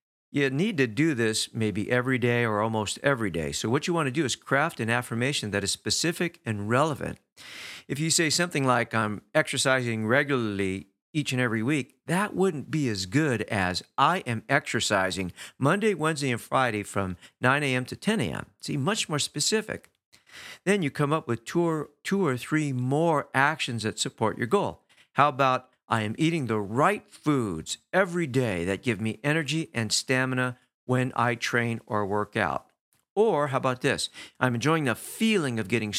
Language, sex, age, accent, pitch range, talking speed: English, male, 50-69, American, 110-150 Hz, 185 wpm